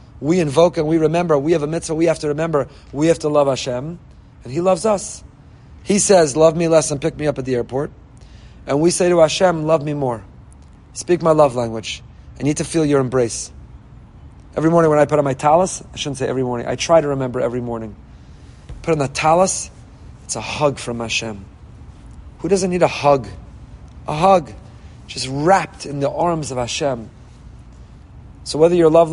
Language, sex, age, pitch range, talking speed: English, male, 30-49, 125-170 Hz, 200 wpm